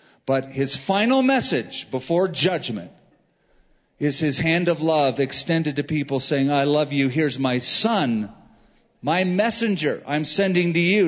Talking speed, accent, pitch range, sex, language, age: 145 wpm, American, 145-185 Hz, male, English, 40-59